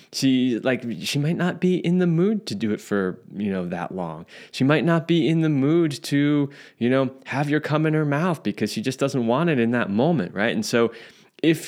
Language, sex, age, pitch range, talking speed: English, male, 20-39, 115-145 Hz, 235 wpm